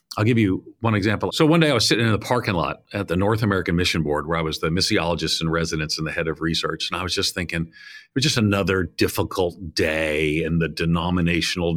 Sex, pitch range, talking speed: male, 90-135 Hz, 240 wpm